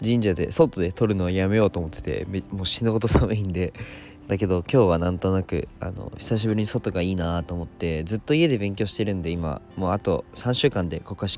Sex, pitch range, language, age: male, 90-110 Hz, Japanese, 20-39